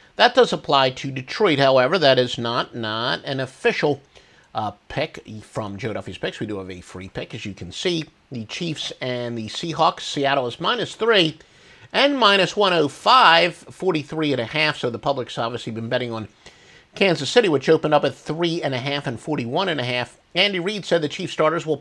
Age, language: 50-69, English